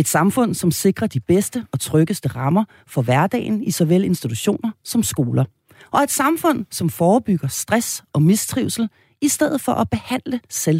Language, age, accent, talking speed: Danish, 40-59, native, 160 wpm